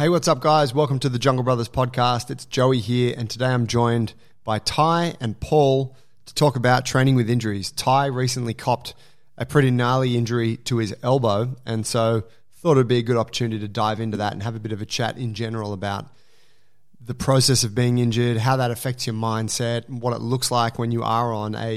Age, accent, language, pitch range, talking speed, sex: 20-39, Australian, English, 110-130 Hz, 220 wpm, male